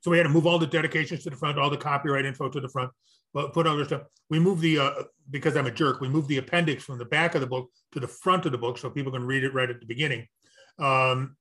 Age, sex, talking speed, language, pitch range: 40-59, male, 295 wpm, English, 130-170 Hz